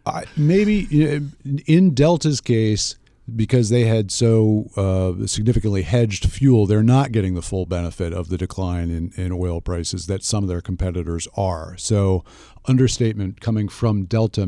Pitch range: 90-110 Hz